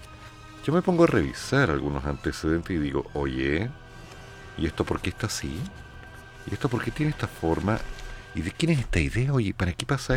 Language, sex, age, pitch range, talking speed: Spanish, male, 50-69, 75-120 Hz, 195 wpm